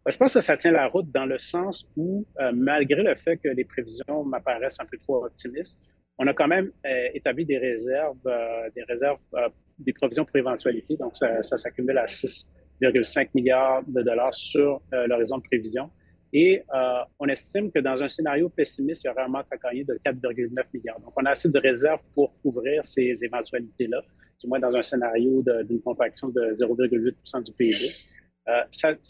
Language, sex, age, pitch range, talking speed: French, male, 30-49, 125-150 Hz, 200 wpm